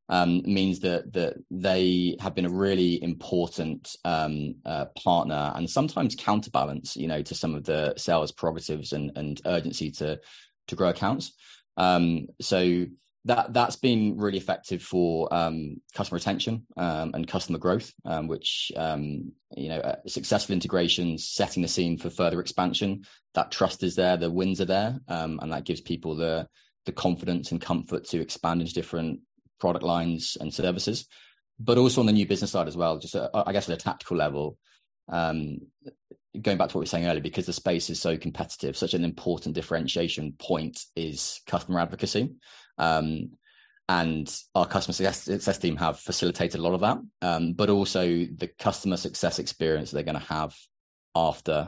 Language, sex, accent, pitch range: English, male, British, 80-95 Hz